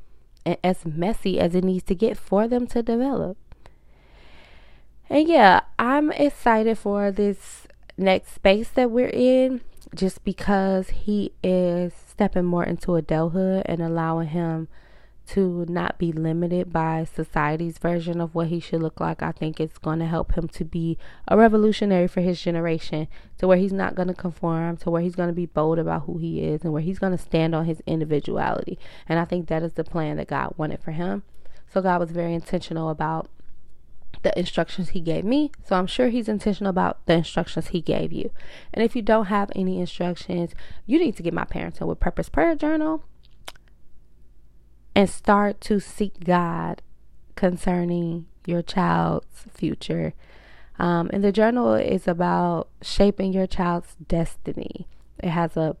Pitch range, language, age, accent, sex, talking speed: 165-200 Hz, English, 20-39, American, female, 175 wpm